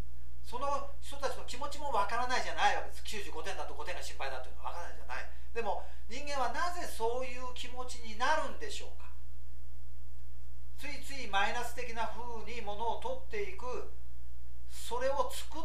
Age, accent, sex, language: 40-59, native, male, Japanese